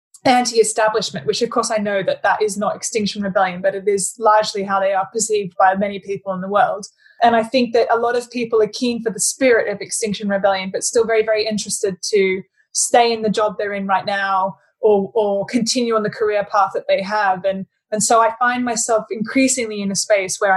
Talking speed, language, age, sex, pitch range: 225 wpm, English, 20-39, female, 200-245 Hz